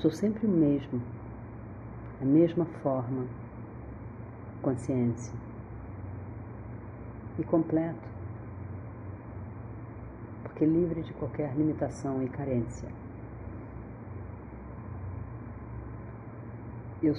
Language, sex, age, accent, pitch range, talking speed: Portuguese, female, 40-59, Brazilian, 115-135 Hz, 65 wpm